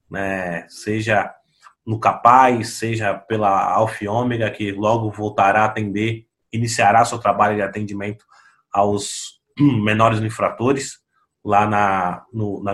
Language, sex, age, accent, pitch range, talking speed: Portuguese, male, 20-39, Brazilian, 105-125 Hz, 120 wpm